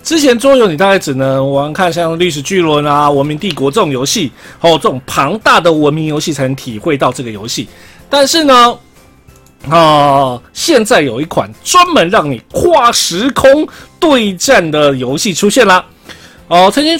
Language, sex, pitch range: Chinese, male, 145-220 Hz